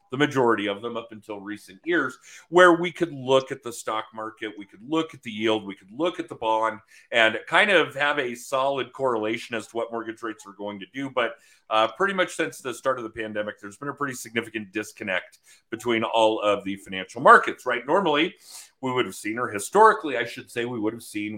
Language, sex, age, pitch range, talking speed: English, male, 40-59, 105-135 Hz, 225 wpm